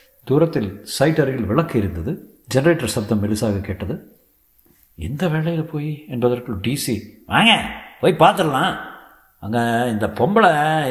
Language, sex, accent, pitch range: Tamil, male, native, 105-130 Hz